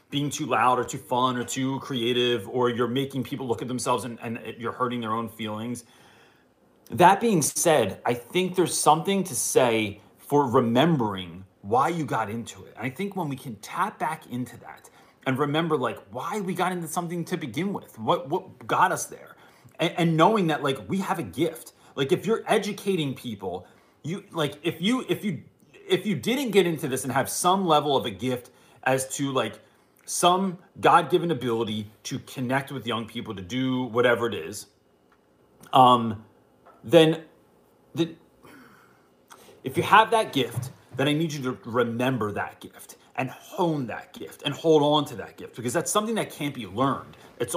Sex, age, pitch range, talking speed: male, 30-49, 120-165 Hz, 185 wpm